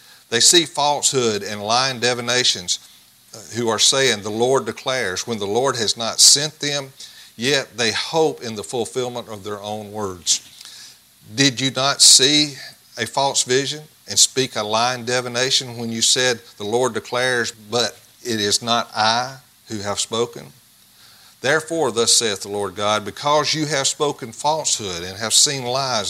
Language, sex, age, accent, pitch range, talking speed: English, male, 50-69, American, 105-135 Hz, 160 wpm